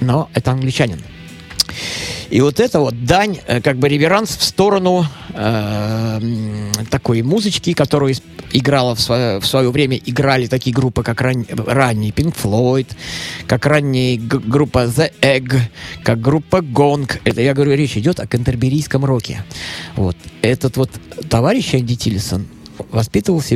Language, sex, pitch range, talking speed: Russian, male, 110-145 Hz, 140 wpm